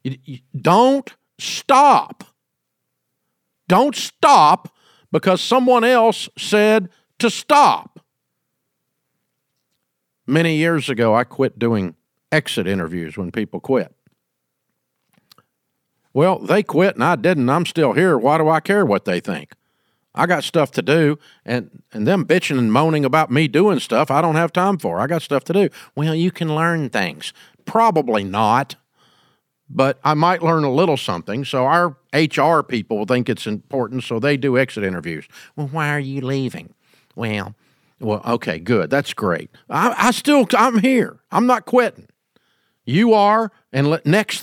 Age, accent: 50-69, American